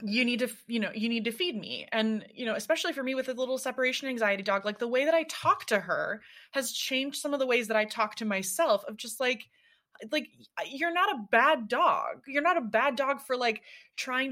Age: 20-39